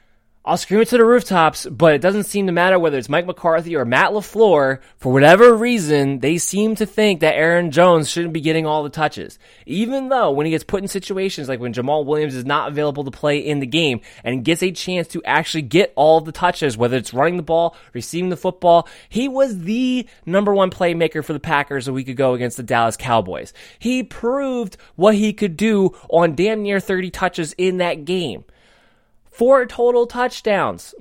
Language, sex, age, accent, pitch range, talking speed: English, male, 20-39, American, 150-210 Hz, 205 wpm